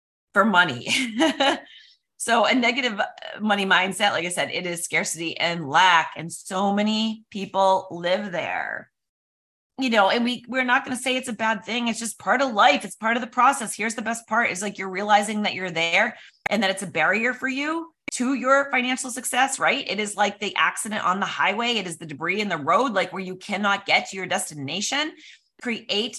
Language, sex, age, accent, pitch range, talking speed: English, female, 30-49, American, 175-240 Hz, 210 wpm